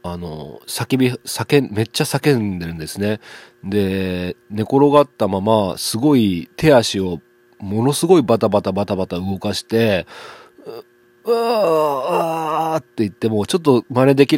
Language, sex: Japanese, male